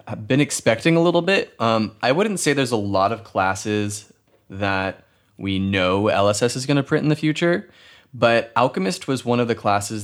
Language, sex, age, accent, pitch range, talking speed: English, male, 20-39, American, 100-120 Hz, 195 wpm